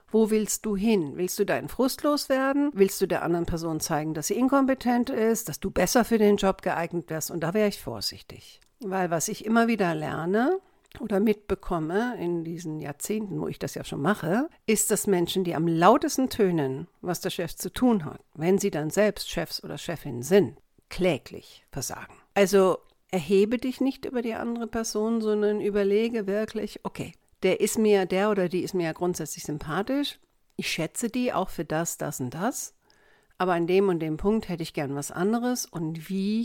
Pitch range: 170-220 Hz